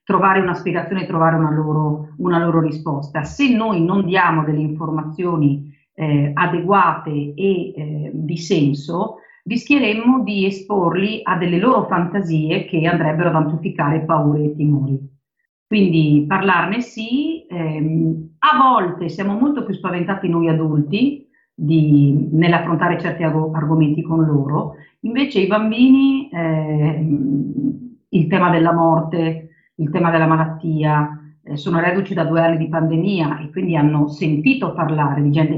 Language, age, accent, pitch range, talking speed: Italian, 40-59, native, 155-185 Hz, 135 wpm